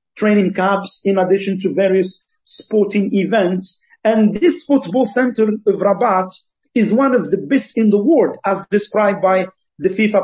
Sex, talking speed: male, 160 wpm